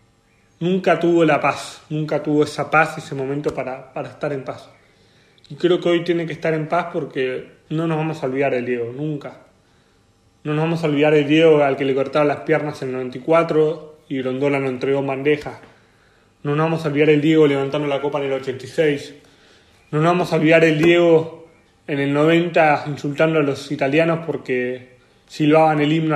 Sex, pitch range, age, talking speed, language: male, 135-160 Hz, 20-39, 195 wpm, Spanish